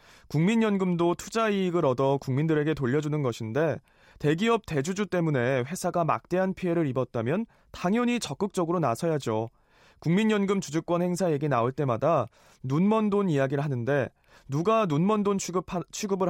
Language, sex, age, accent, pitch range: Korean, male, 20-39, native, 135-190 Hz